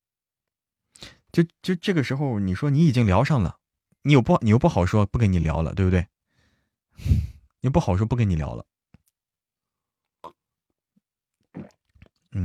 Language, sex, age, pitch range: Chinese, male, 20-39, 95-155 Hz